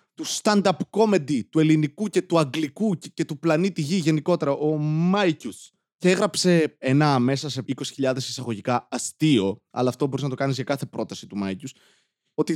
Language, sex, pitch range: Greek, male, 125-175 Hz